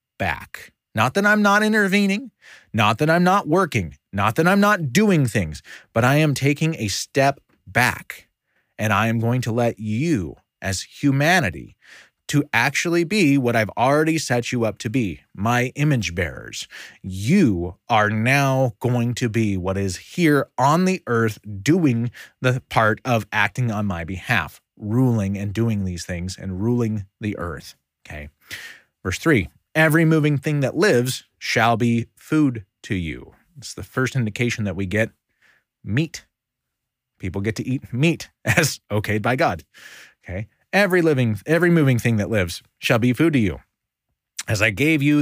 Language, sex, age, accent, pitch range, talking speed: English, male, 30-49, American, 105-145 Hz, 165 wpm